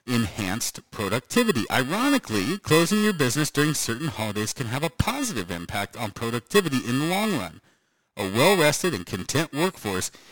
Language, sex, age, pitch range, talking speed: English, male, 50-69, 100-160 Hz, 145 wpm